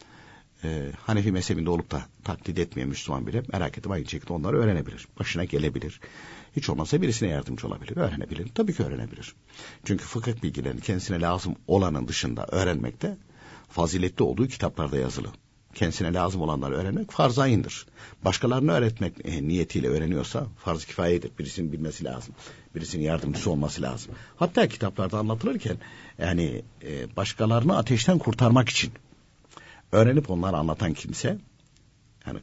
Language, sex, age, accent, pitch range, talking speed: Turkish, male, 60-79, native, 80-115 Hz, 125 wpm